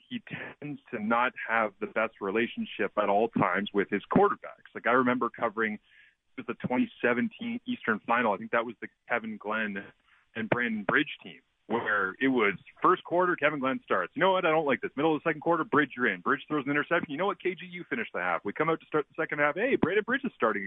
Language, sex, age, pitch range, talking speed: English, male, 30-49, 120-170 Hz, 240 wpm